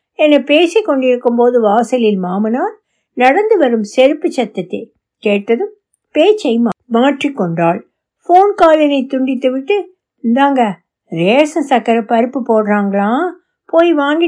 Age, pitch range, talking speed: 60-79, 220-300 Hz, 45 wpm